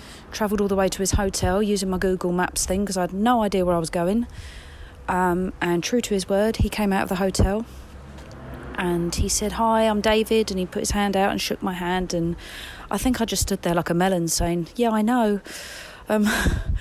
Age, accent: 30-49, British